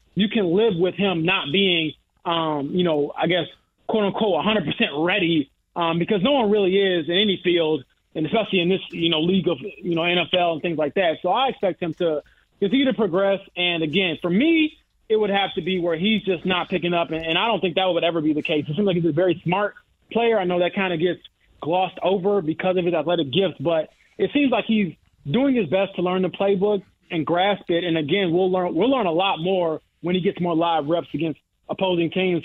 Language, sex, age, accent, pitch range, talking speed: English, male, 20-39, American, 170-210 Hz, 235 wpm